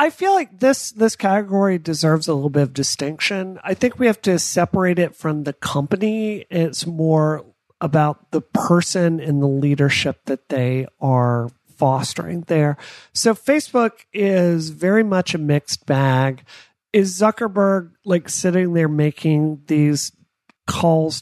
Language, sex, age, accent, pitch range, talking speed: English, male, 40-59, American, 150-195 Hz, 145 wpm